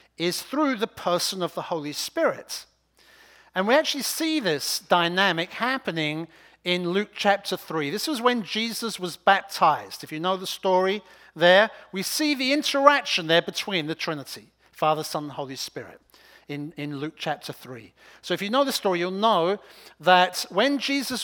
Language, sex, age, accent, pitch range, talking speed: English, male, 50-69, British, 165-230 Hz, 170 wpm